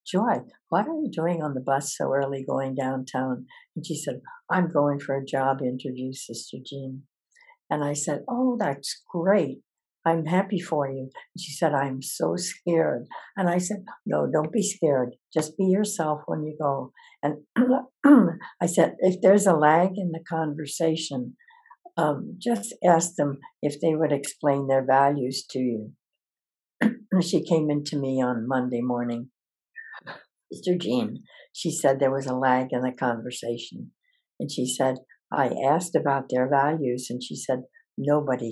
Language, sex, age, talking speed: English, female, 60-79, 165 wpm